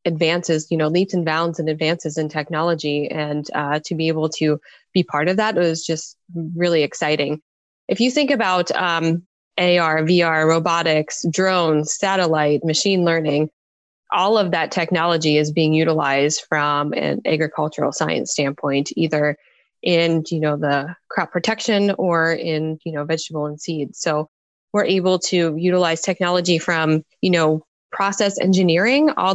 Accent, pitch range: American, 155-185 Hz